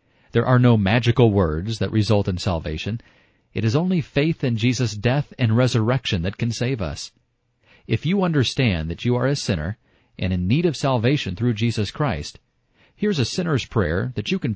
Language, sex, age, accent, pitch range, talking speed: English, male, 40-59, American, 95-130 Hz, 185 wpm